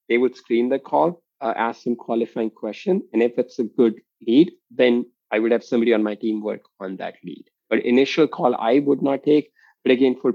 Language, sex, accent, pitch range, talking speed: English, male, Indian, 110-125 Hz, 220 wpm